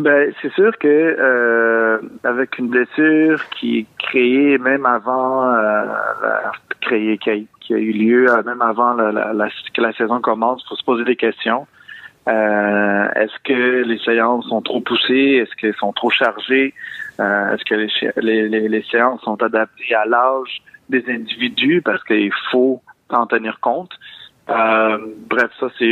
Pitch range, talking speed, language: 110-130 Hz, 165 wpm, French